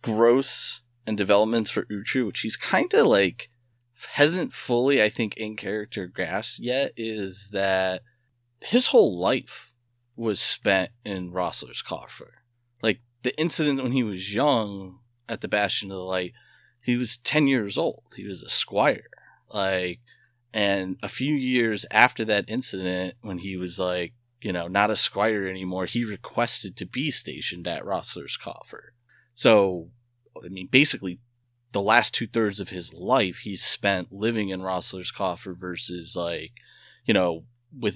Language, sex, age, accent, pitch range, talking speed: English, male, 30-49, American, 100-120 Hz, 155 wpm